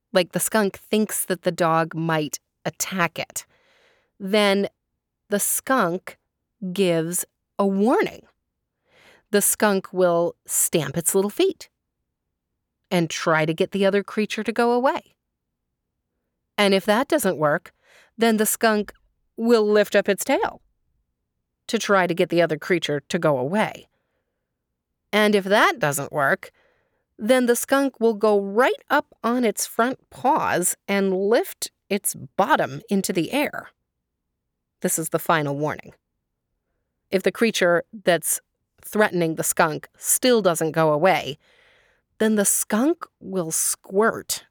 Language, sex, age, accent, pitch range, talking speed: English, female, 30-49, American, 170-230 Hz, 135 wpm